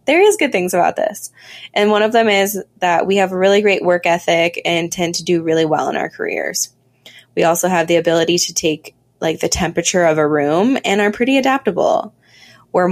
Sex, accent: female, American